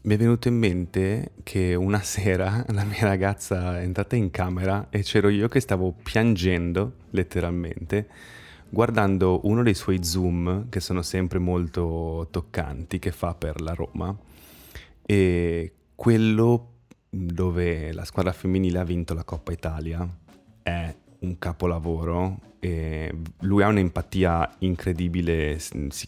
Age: 20-39